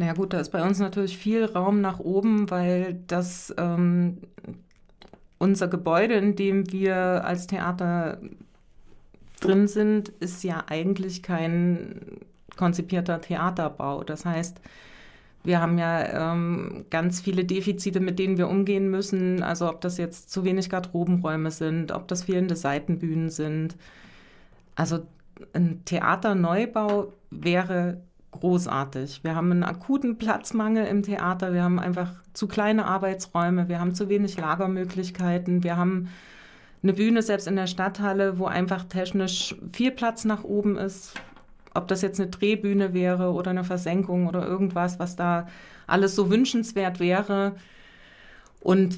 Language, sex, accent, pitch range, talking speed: German, female, German, 175-195 Hz, 140 wpm